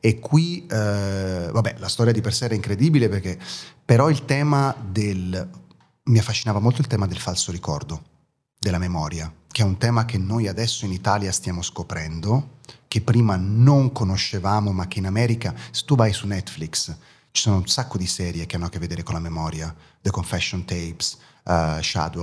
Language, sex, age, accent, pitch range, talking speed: Italian, male, 30-49, native, 85-110 Hz, 180 wpm